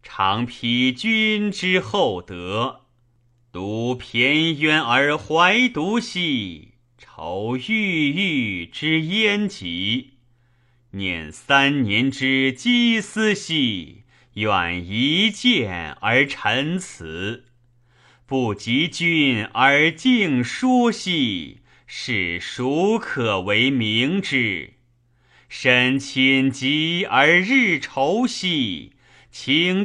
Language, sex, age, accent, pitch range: Chinese, male, 30-49, native, 115-155 Hz